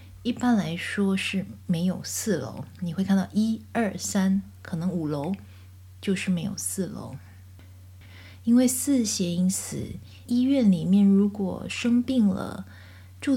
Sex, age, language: female, 20-39, Chinese